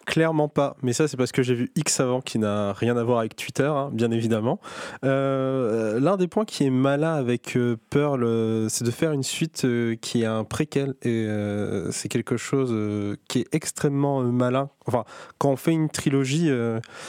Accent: French